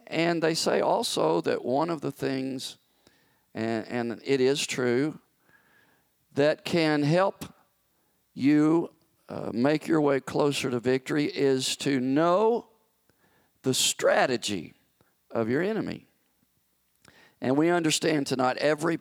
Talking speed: 120 wpm